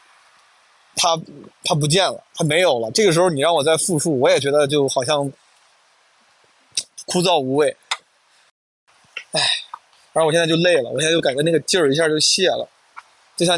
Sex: male